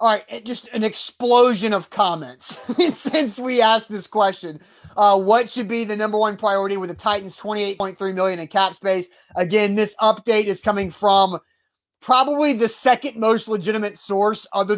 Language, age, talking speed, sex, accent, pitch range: English, 30-49, 165 wpm, male, American, 185-220 Hz